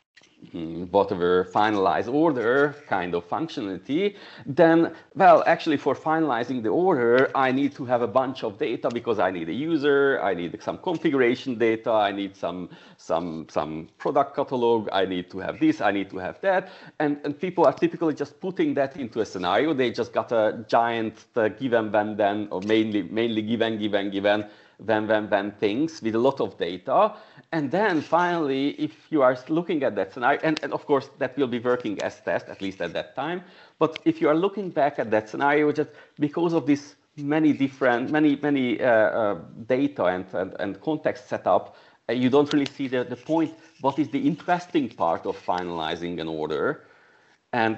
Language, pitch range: English, 105-150 Hz